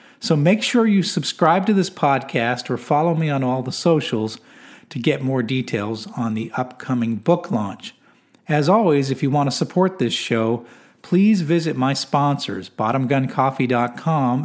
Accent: American